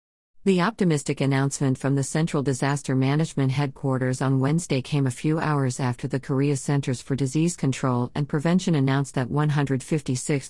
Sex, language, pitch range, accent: female, Korean, 130-155 Hz, American